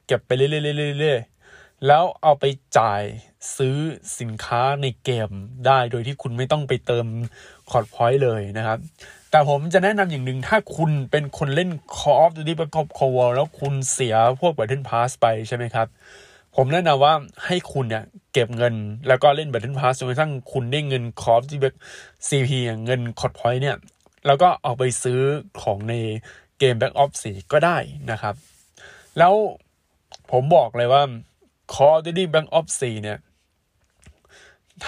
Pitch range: 120-155 Hz